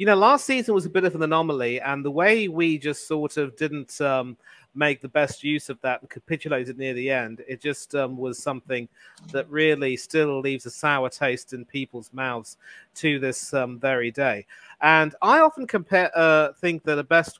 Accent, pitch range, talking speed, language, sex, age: British, 130-155 Hz, 200 wpm, English, male, 40-59